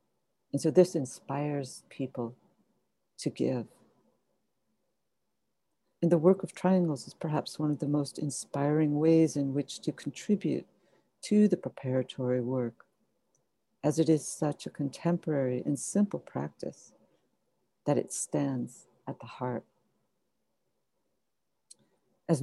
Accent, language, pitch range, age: American, English, 135-160 Hz, 60-79